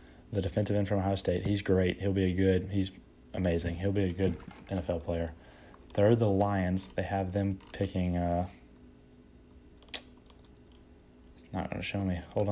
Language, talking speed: English, 165 wpm